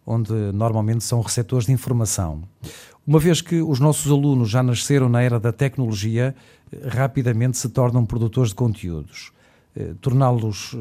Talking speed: 140 wpm